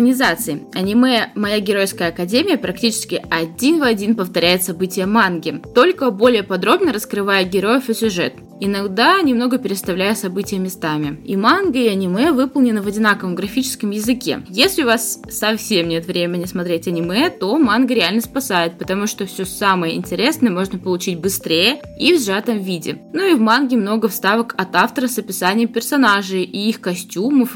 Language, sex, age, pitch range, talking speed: Russian, female, 20-39, 185-235 Hz, 150 wpm